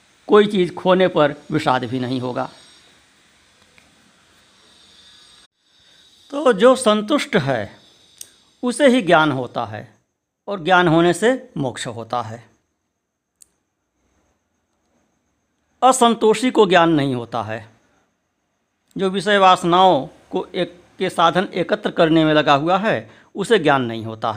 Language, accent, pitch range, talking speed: Hindi, native, 125-200 Hz, 115 wpm